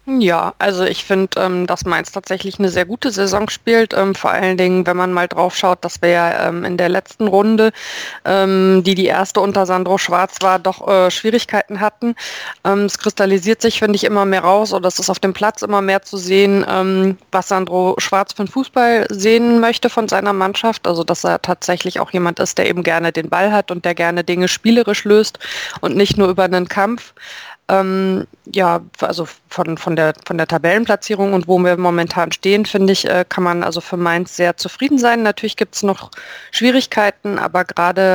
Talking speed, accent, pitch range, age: 200 wpm, German, 180-205 Hz, 20-39